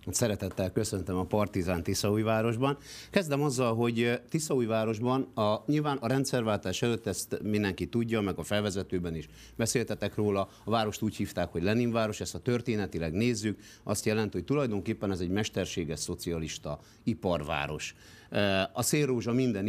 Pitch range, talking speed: 95-120 Hz, 135 wpm